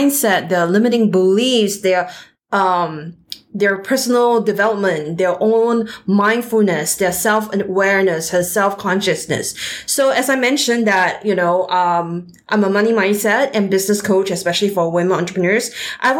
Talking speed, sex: 135 wpm, female